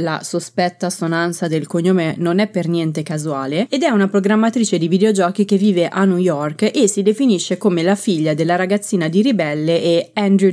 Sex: female